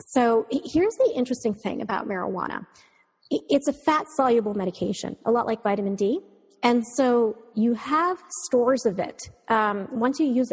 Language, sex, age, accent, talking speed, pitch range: English, female, 30-49, American, 155 wpm, 205-255 Hz